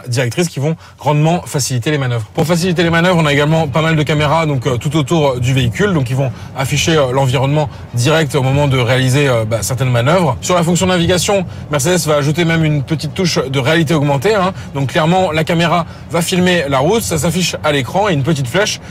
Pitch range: 140-170 Hz